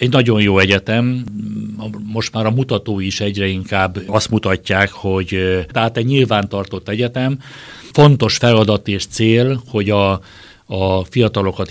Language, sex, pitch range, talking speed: Hungarian, male, 95-115 Hz, 135 wpm